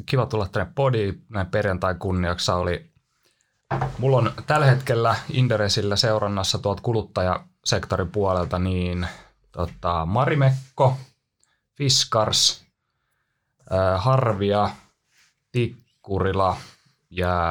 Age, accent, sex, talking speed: 20-39, native, male, 75 wpm